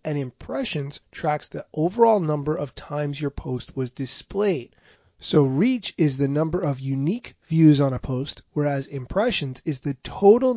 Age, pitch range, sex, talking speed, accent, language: 30-49, 135-175 Hz, male, 160 wpm, American, English